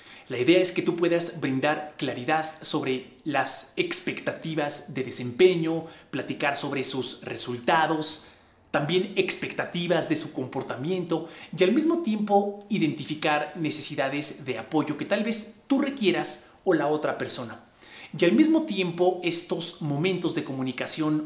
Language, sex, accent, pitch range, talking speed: Spanish, male, Mexican, 145-180 Hz, 135 wpm